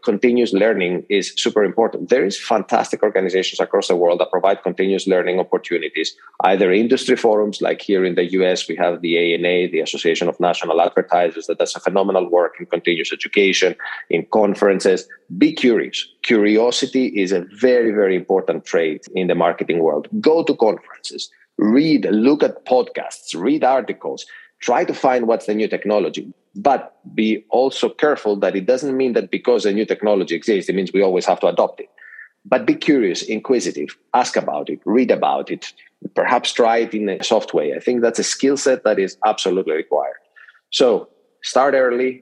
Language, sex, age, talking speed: English, male, 30-49, 175 wpm